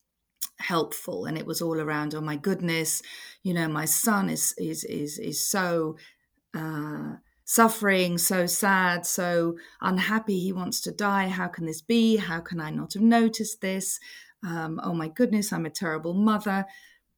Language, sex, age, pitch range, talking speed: English, female, 40-59, 155-200 Hz, 165 wpm